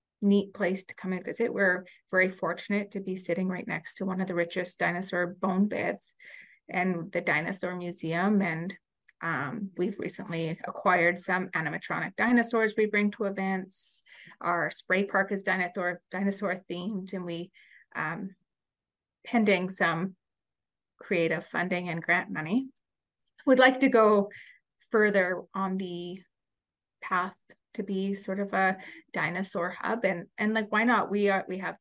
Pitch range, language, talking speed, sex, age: 180-205 Hz, English, 150 wpm, female, 30-49